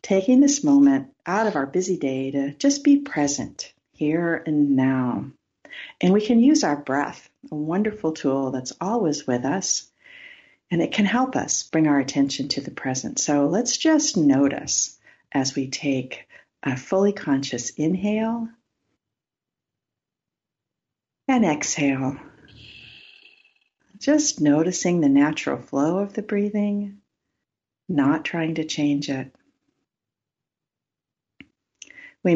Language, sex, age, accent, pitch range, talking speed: English, female, 50-69, American, 140-230 Hz, 120 wpm